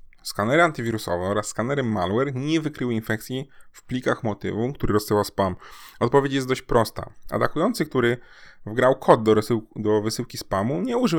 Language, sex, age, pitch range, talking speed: Polish, male, 20-39, 105-125 Hz, 155 wpm